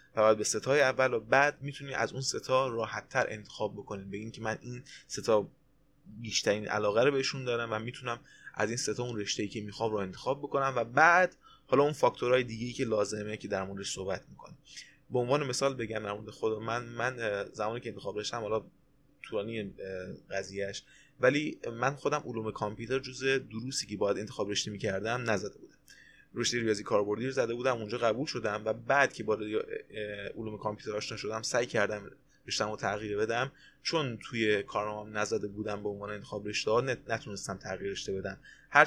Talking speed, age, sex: 175 wpm, 20-39, male